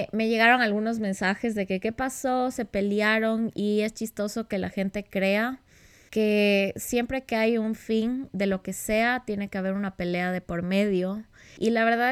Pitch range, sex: 185-220 Hz, female